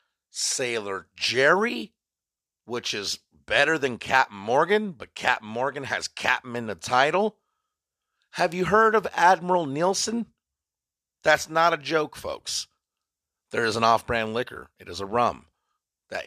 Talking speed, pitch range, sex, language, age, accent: 135 wpm, 90-145 Hz, male, English, 40-59, American